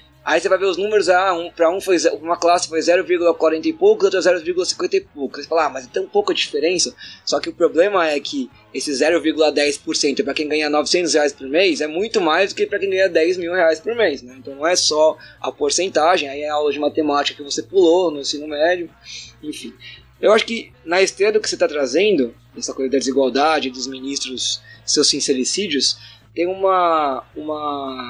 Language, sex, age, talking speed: Portuguese, male, 20-39, 210 wpm